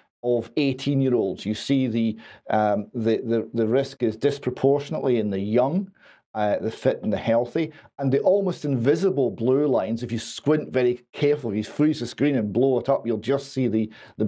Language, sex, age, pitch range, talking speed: English, male, 40-59, 115-140 Hz, 195 wpm